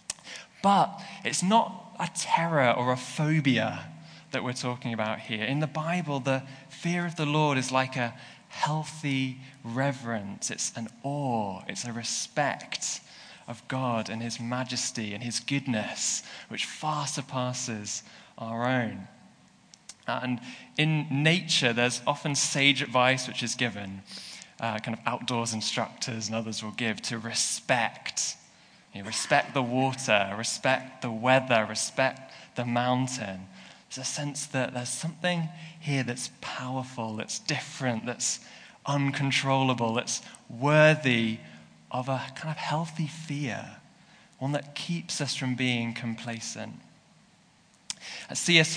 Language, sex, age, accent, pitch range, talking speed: English, male, 20-39, British, 115-145 Hz, 130 wpm